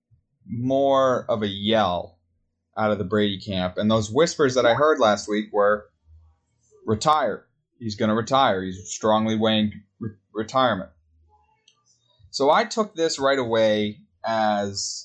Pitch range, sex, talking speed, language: 100-125 Hz, male, 130 wpm, English